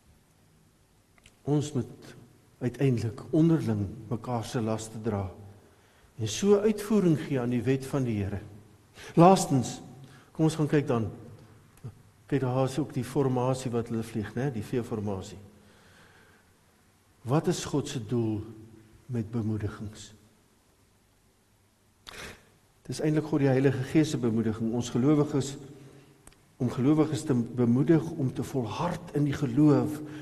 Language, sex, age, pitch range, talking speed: English, male, 50-69, 115-165 Hz, 125 wpm